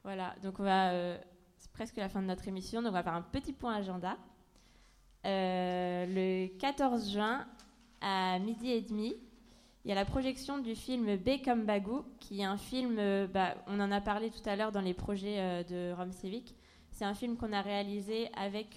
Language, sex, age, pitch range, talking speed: French, female, 20-39, 190-230 Hz, 210 wpm